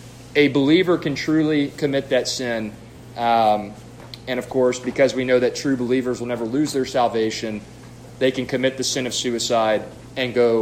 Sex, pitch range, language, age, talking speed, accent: male, 120-140 Hz, English, 30-49, 175 wpm, American